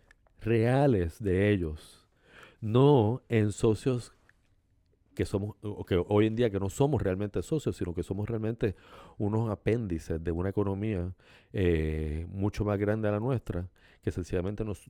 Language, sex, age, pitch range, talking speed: Spanish, male, 50-69, 95-120 Hz, 150 wpm